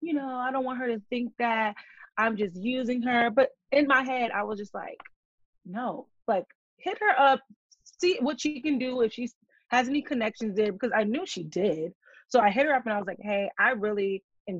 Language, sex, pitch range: English, female, 195-255 Hz